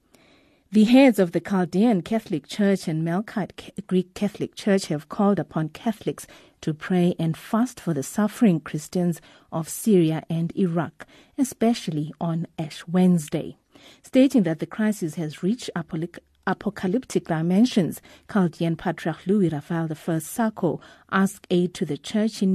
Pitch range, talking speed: 165-200 Hz, 140 wpm